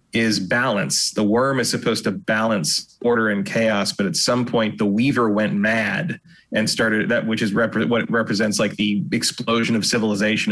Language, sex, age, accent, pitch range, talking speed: English, male, 30-49, American, 105-120 Hz, 175 wpm